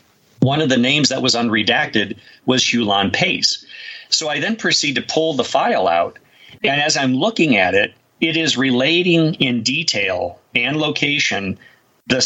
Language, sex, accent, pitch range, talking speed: English, male, American, 115-140 Hz, 160 wpm